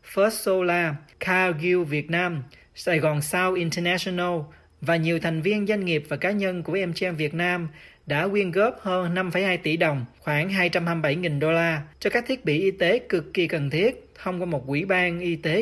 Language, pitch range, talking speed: Vietnamese, 150-195 Hz, 195 wpm